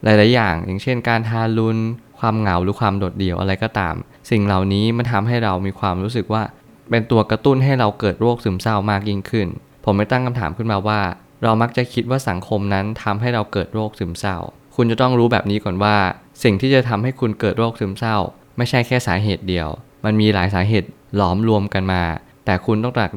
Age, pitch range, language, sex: 20-39, 100-120 Hz, Thai, male